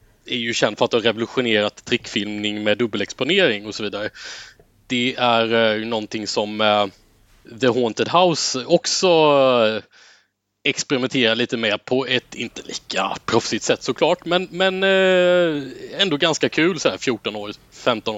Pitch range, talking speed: 110-145 Hz, 150 wpm